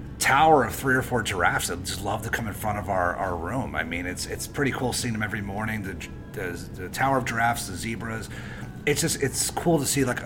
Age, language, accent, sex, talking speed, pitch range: 30-49, English, American, male, 245 wpm, 95-115 Hz